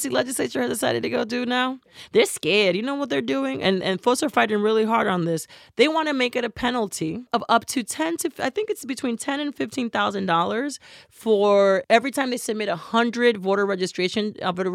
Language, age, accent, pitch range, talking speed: English, 30-49, American, 180-240 Hz, 220 wpm